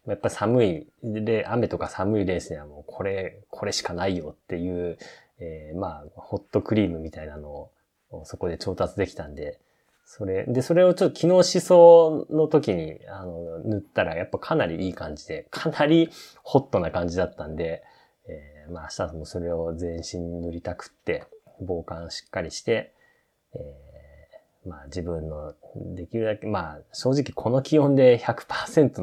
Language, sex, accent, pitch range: Japanese, male, native, 80-125 Hz